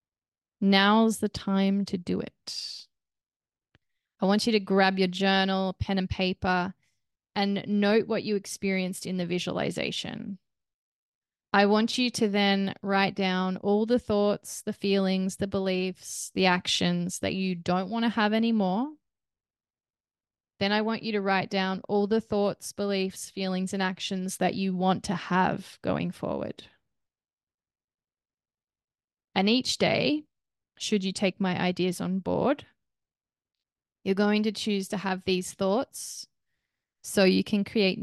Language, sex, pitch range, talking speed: English, female, 185-205 Hz, 140 wpm